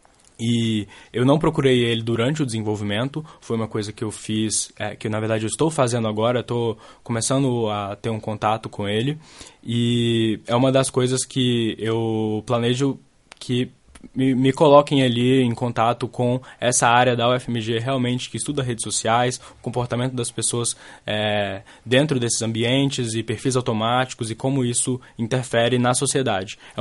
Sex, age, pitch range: male, 10-29, 110-130 Hz